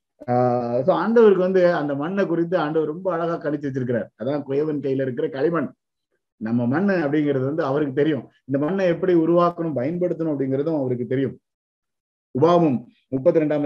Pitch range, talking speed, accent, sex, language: 125-165 Hz, 150 wpm, native, male, Tamil